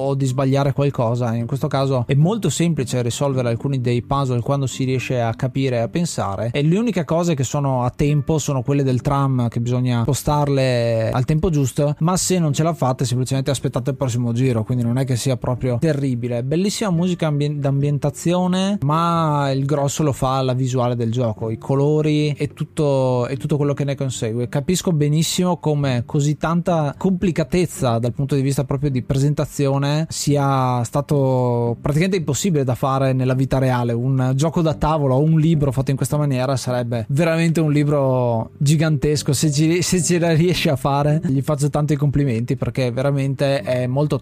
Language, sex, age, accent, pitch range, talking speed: Italian, male, 20-39, native, 130-155 Hz, 185 wpm